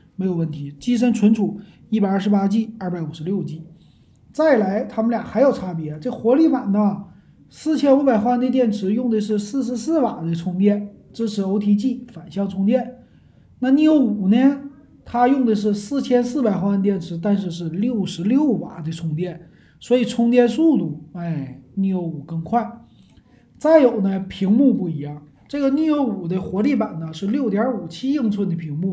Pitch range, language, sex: 175-245 Hz, Chinese, male